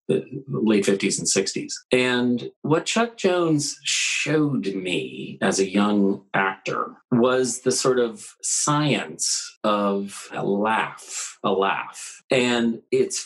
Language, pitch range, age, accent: English, 100-150 Hz, 40-59, American